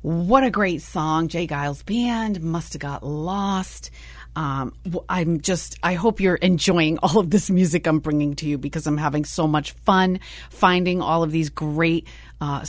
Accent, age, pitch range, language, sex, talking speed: American, 40-59, 145-185 Hz, English, female, 180 wpm